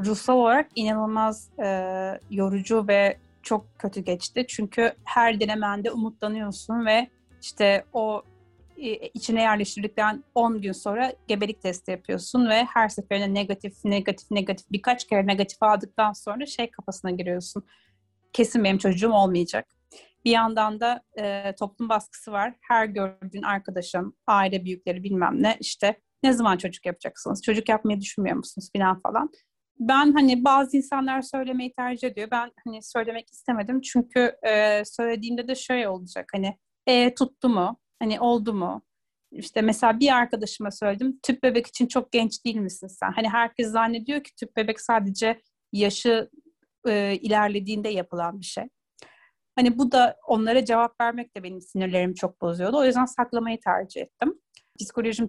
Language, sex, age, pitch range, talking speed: Turkish, female, 30-49, 200-240 Hz, 150 wpm